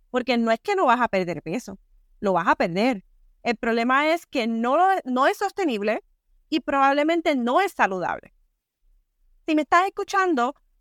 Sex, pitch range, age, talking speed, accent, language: female, 225-305 Hz, 30-49, 165 wpm, American, English